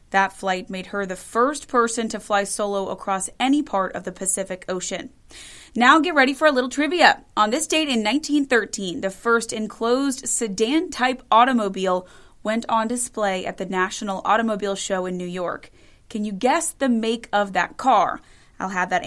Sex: female